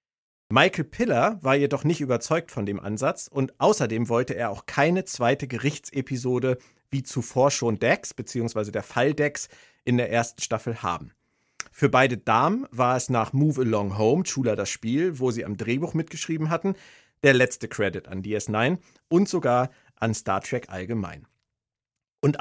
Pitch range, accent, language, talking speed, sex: 120-160 Hz, German, German, 160 wpm, male